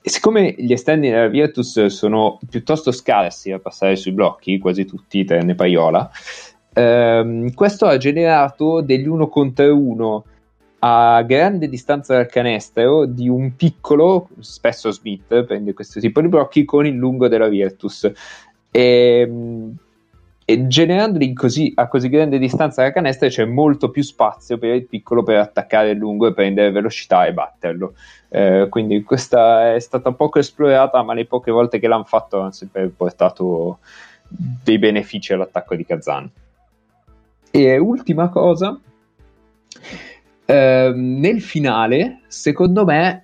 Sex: male